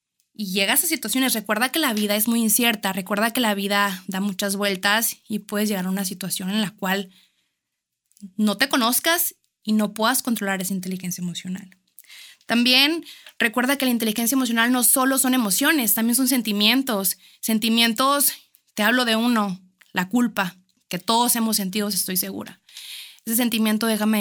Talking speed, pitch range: 165 wpm, 200-250 Hz